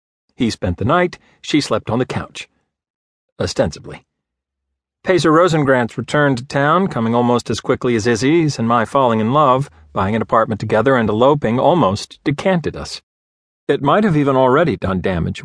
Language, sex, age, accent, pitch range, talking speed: English, male, 40-59, American, 105-150 Hz, 165 wpm